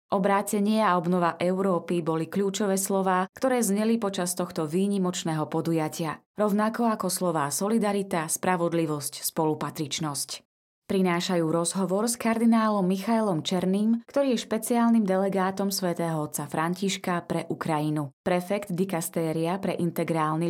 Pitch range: 165-205 Hz